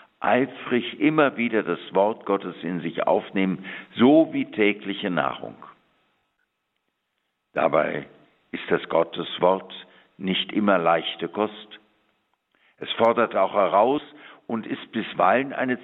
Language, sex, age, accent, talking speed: German, male, 60-79, German, 115 wpm